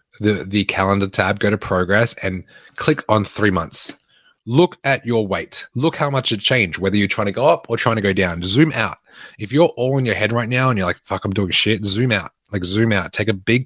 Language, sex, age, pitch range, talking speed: English, male, 20-39, 100-135 Hz, 250 wpm